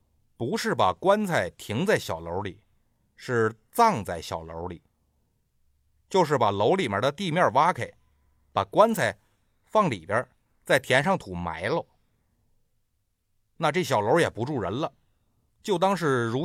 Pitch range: 95-165 Hz